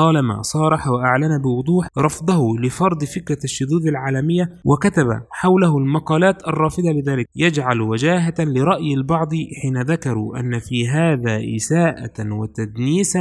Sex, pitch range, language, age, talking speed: male, 125-160 Hz, Arabic, 20-39, 115 wpm